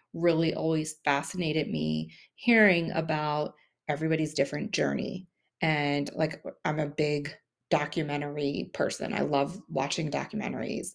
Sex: female